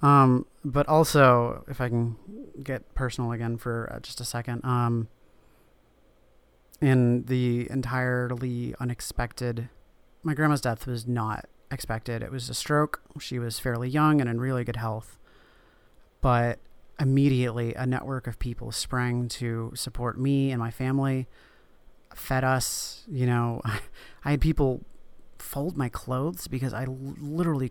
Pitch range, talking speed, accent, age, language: 120-135 Hz, 140 wpm, American, 30-49, English